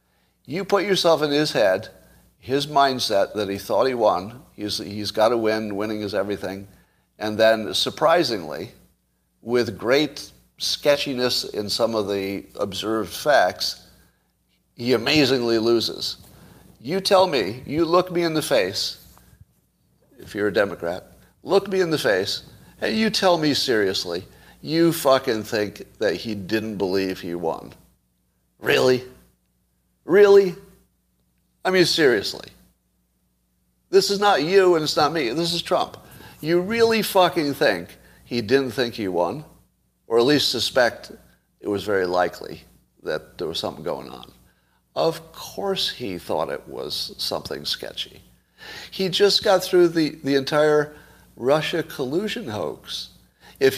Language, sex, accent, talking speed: English, male, American, 140 wpm